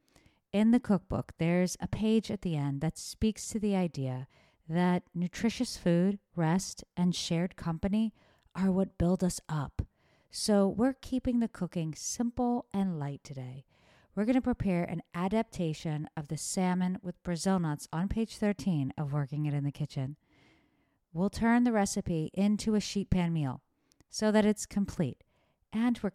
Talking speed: 165 wpm